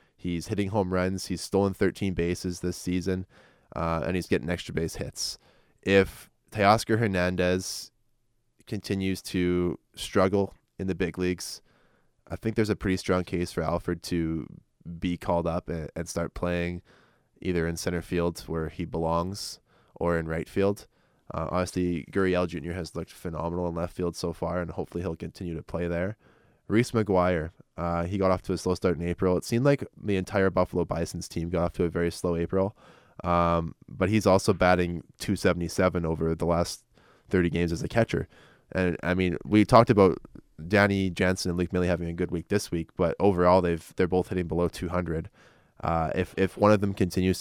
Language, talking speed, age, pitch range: English, 190 wpm, 20-39, 85-95 Hz